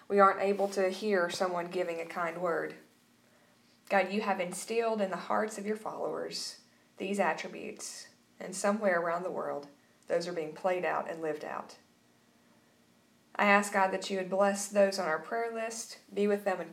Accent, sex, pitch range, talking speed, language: American, female, 165-210 Hz, 185 wpm, English